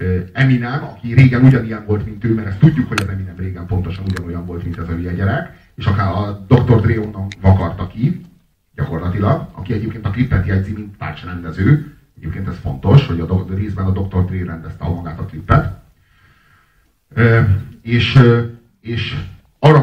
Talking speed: 175 wpm